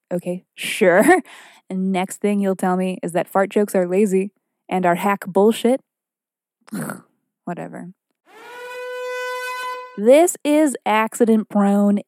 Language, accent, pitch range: English, American, 195-245 Hz